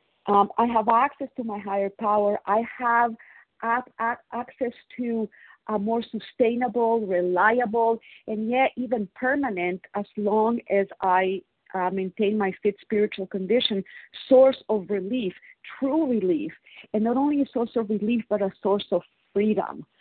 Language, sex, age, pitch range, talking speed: English, female, 40-59, 195-235 Hz, 145 wpm